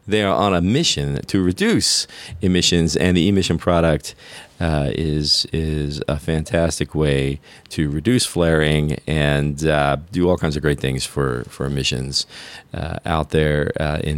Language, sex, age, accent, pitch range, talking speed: English, male, 40-59, American, 75-95 Hz, 150 wpm